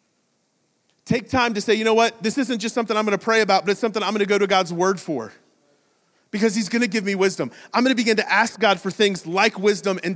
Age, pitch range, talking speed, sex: 30-49, 170-220 Hz, 260 wpm, male